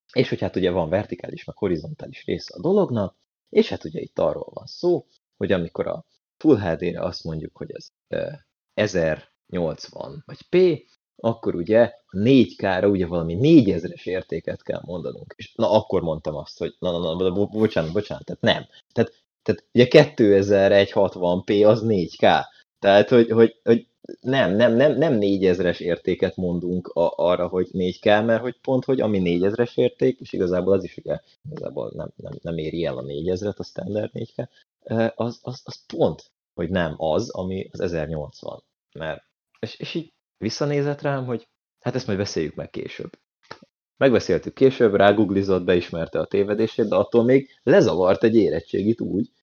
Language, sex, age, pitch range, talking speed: Hungarian, male, 30-49, 90-120 Hz, 155 wpm